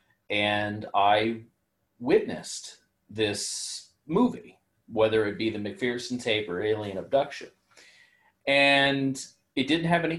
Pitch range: 95-125 Hz